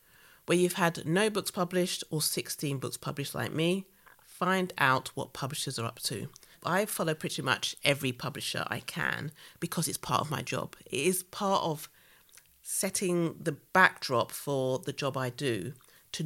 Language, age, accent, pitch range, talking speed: English, 40-59, British, 135-170 Hz, 170 wpm